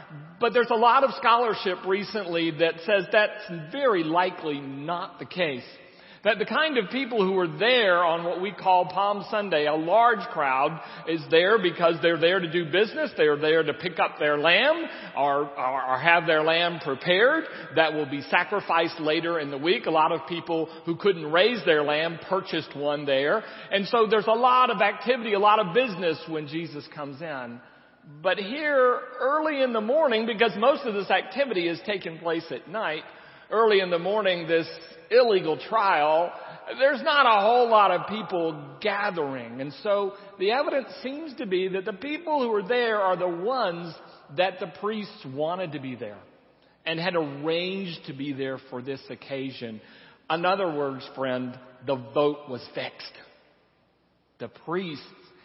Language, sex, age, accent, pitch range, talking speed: English, male, 40-59, American, 155-215 Hz, 175 wpm